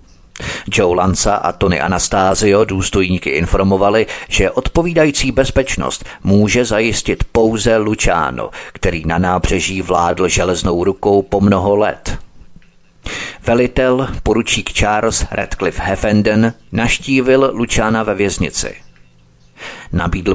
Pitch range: 90-115 Hz